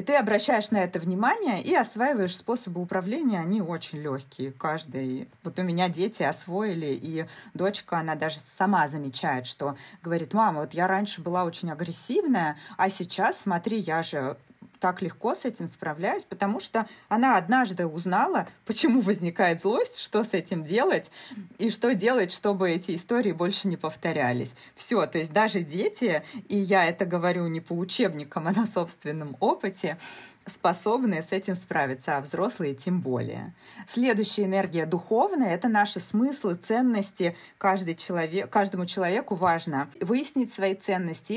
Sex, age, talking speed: female, 20-39, 150 wpm